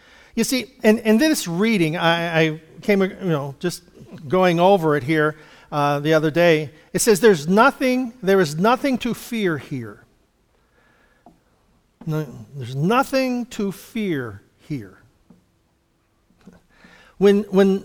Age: 50-69